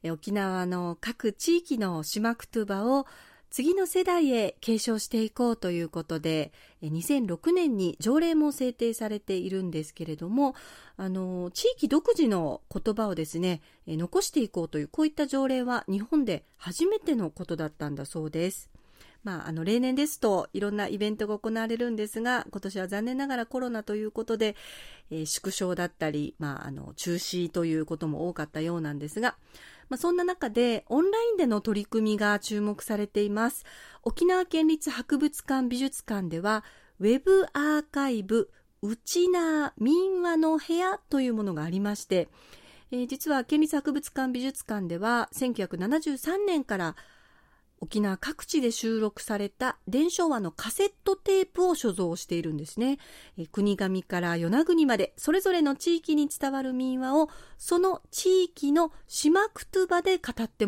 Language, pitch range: Japanese, 190-310 Hz